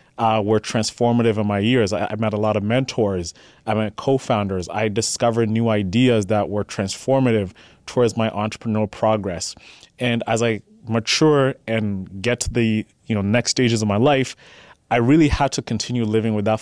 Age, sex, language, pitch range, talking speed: 20-39, male, English, 105-125 Hz, 175 wpm